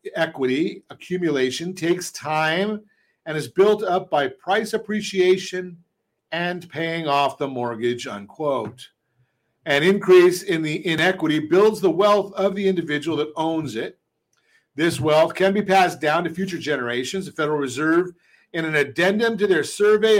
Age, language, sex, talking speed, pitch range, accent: 50-69, English, male, 145 wpm, 145-190 Hz, American